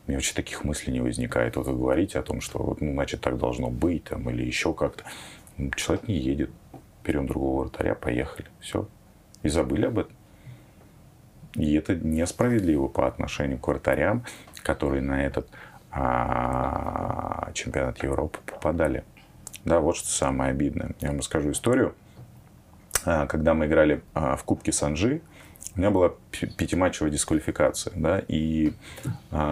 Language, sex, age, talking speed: Russian, male, 30-49, 145 wpm